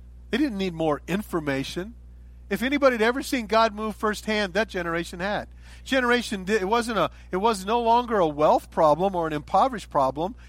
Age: 40-59